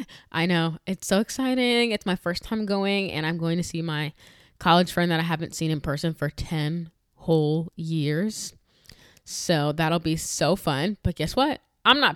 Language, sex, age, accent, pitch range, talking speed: English, female, 10-29, American, 155-195 Hz, 190 wpm